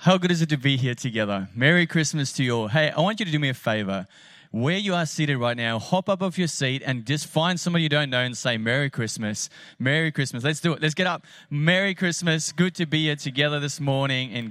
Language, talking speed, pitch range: English, 255 wpm, 135-175 Hz